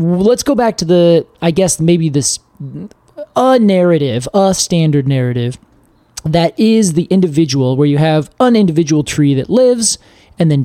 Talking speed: 160 wpm